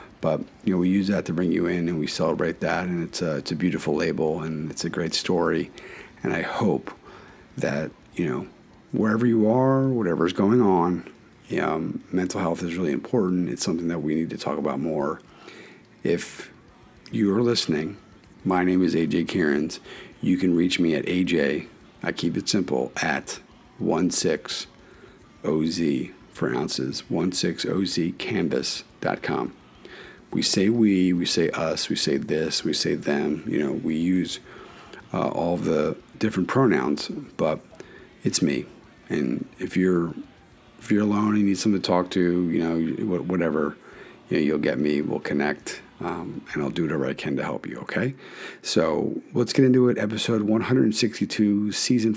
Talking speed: 165 wpm